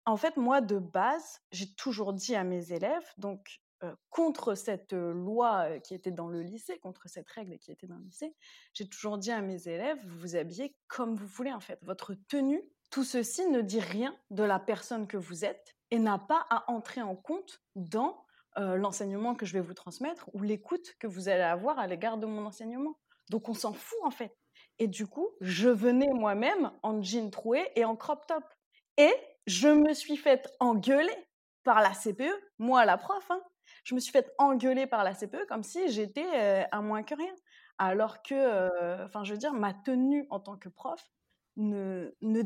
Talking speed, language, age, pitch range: 205 wpm, French, 20-39, 195-275 Hz